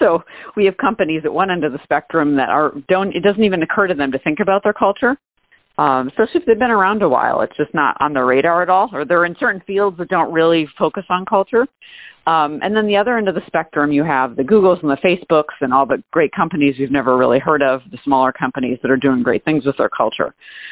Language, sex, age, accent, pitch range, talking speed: English, female, 40-59, American, 145-200 Hz, 255 wpm